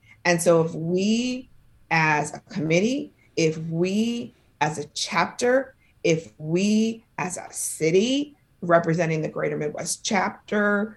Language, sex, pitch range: English, female, 160-210 Hz